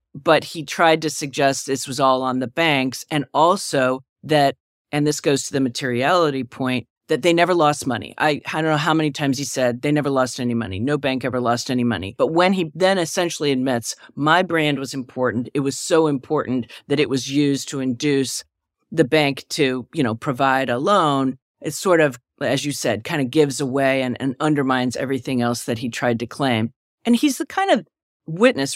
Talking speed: 210 wpm